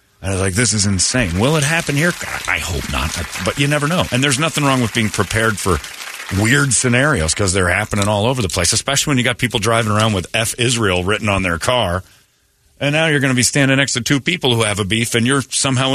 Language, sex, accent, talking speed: English, male, American, 260 wpm